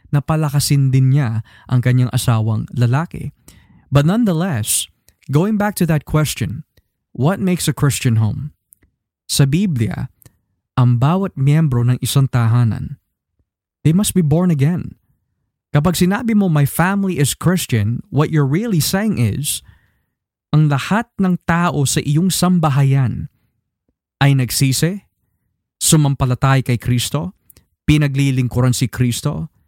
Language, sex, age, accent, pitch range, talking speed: Filipino, male, 20-39, native, 125-170 Hz, 120 wpm